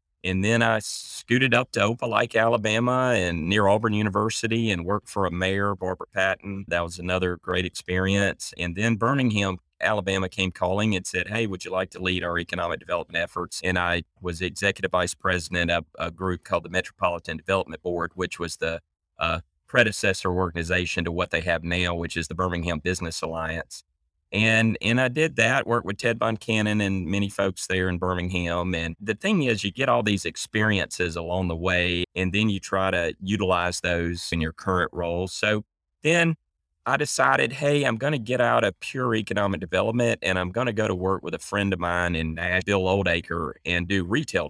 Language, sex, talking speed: English, male, 195 wpm